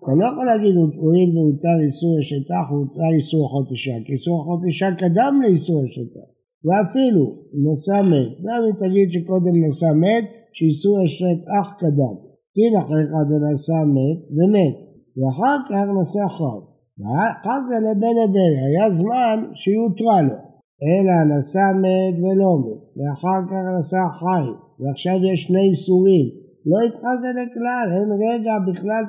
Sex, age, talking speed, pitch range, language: male, 60-79, 140 wpm, 150-200 Hz, Hebrew